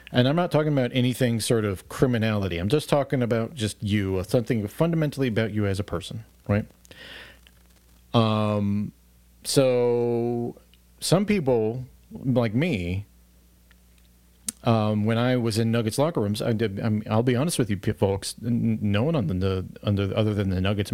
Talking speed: 160 wpm